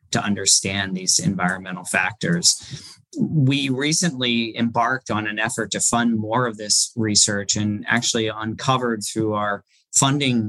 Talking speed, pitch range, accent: 130 wpm, 100-125 Hz, American